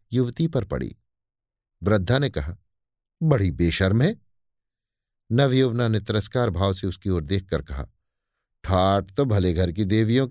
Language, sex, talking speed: Hindi, male, 140 wpm